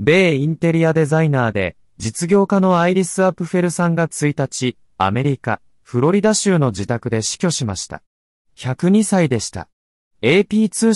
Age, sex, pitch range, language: 30-49, male, 105-170 Hz, Japanese